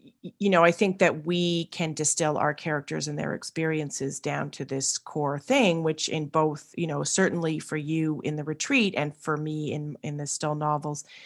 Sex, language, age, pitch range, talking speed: female, English, 30-49, 150-175 Hz, 195 wpm